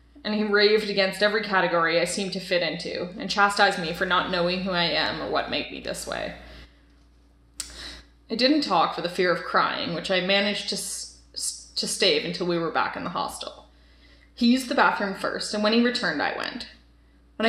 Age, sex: 20-39, female